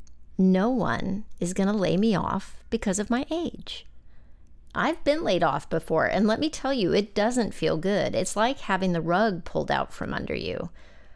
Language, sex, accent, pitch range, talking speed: English, female, American, 170-225 Hz, 195 wpm